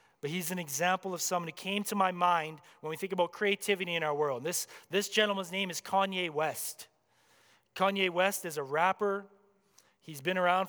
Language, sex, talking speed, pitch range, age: English, male, 190 wpm, 175-205 Hz, 30-49